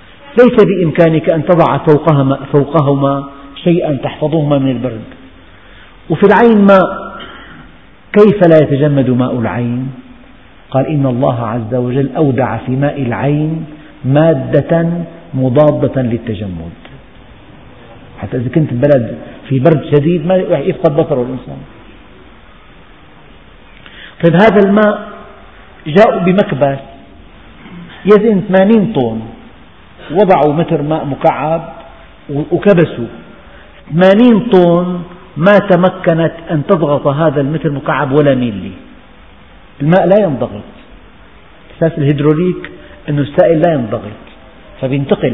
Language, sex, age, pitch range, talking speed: Arabic, male, 50-69, 130-170 Hz, 95 wpm